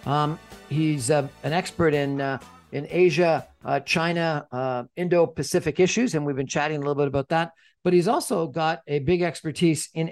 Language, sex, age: English, male, 50-69